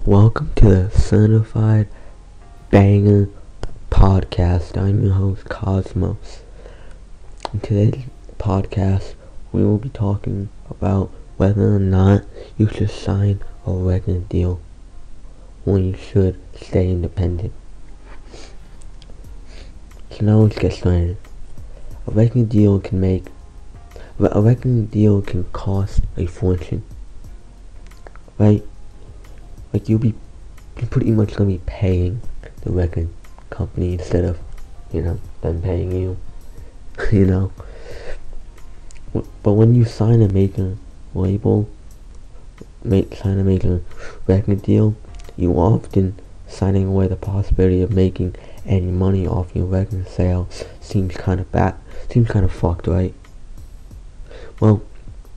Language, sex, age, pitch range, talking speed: English, male, 20-39, 90-105 Hz, 120 wpm